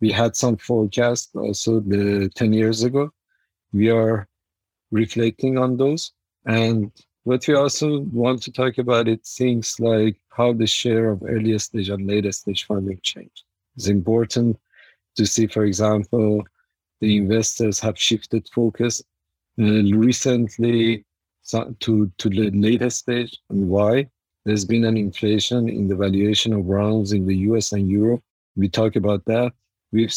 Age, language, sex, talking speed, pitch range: 50-69, English, male, 150 wpm, 100-115 Hz